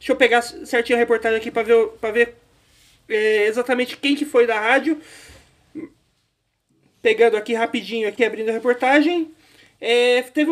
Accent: Brazilian